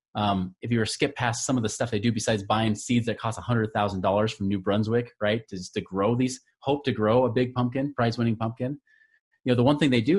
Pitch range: 105-130 Hz